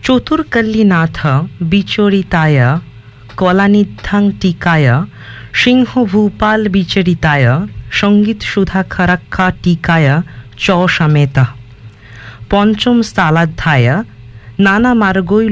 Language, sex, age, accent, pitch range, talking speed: English, female, 50-69, Indian, 135-210 Hz, 70 wpm